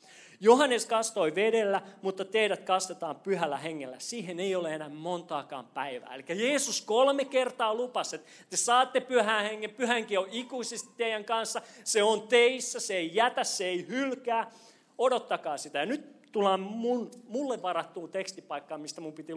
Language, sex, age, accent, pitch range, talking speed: Finnish, male, 30-49, native, 170-245 Hz, 155 wpm